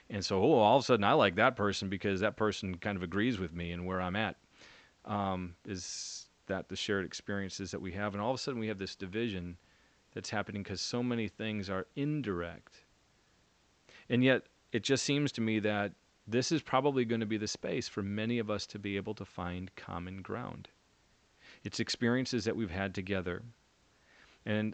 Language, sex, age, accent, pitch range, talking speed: English, male, 40-59, American, 100-120 Hz, 200 wpm